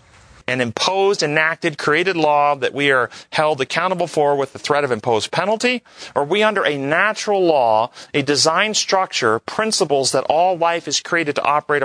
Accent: American